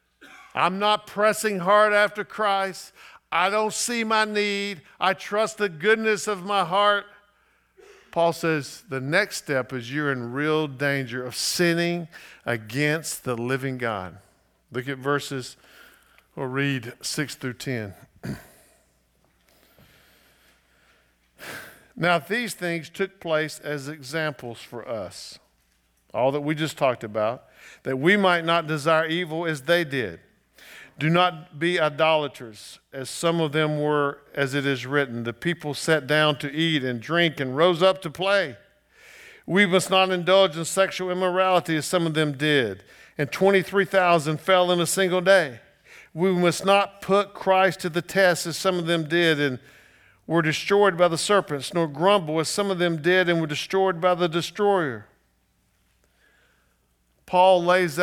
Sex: male